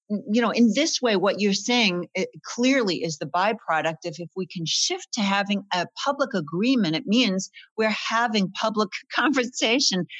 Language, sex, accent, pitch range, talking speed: English, female, American, 175-235 Hz, 170 wpm